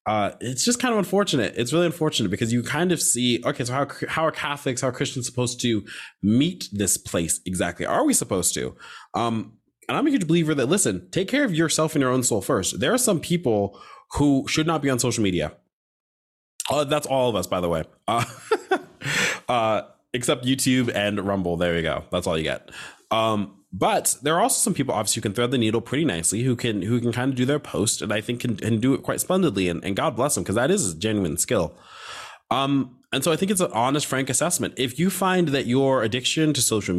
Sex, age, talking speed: male, 20-39, 235 wpm